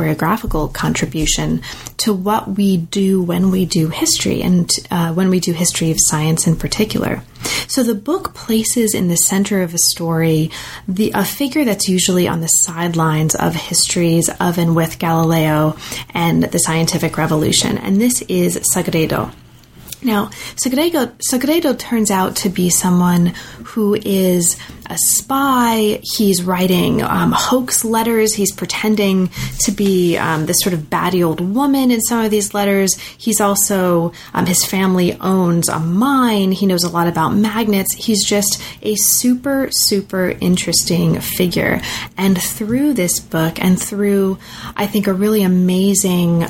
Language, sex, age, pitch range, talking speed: English, female, 30-49, 170-210 Hz, 150 wpm